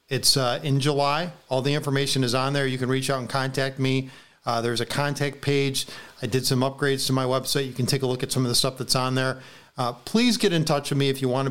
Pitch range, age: 130-155 Hz, 40-59